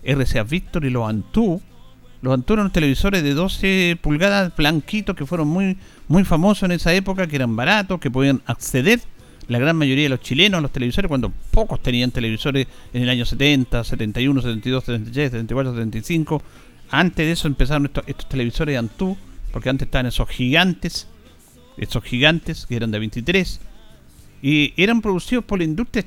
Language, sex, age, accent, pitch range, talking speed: Spanish, male, 50-69, Argentinian, 120-180 Hz, 175 wpm